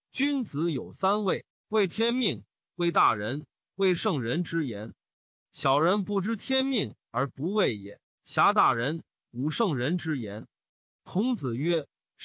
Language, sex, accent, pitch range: Chinese, male, native, 160-215 Hz